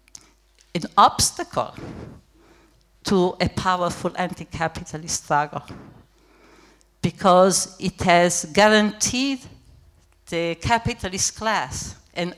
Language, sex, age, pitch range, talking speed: German, female, 60-79, 165-195 Hz, 75 wpm